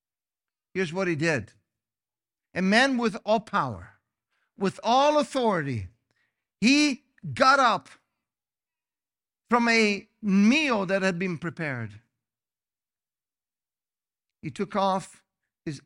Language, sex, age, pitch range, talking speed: English, male, 50-69, 115-165 Hz, 100 wpm